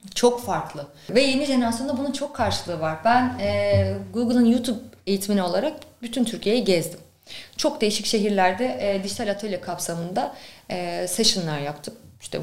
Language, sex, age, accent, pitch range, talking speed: Turkish, female, 30-49, native, 180-240 Hz, 140 wpm